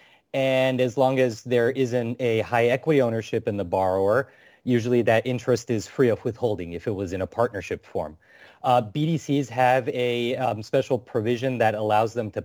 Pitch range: 100-130 Hz